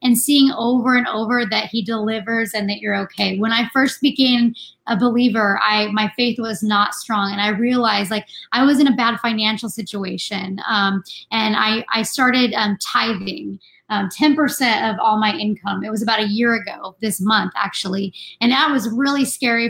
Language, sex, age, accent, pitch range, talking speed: English, female, 20-39, American, 210-250 Hz, 190 wpm